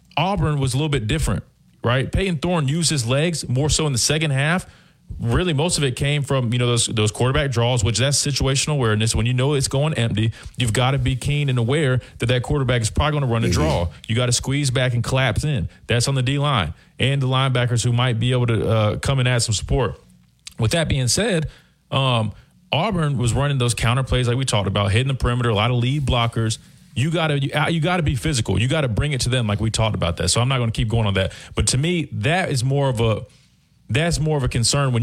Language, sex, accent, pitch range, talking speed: English, male, American, 115-145 Hz, 255 wpm